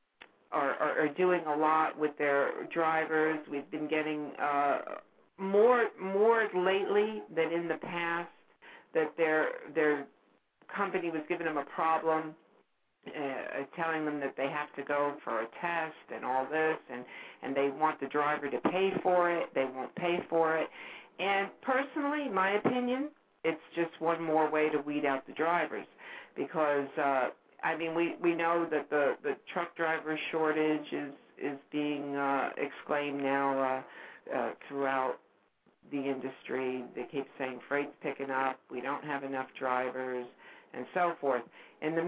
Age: 60-79